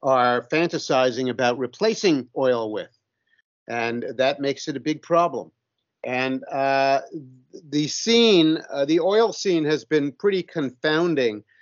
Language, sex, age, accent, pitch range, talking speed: English, male, 50-69, American, 130-160 Hz, 130 wpm